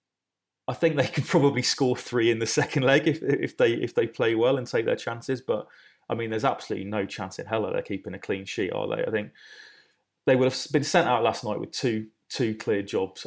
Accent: British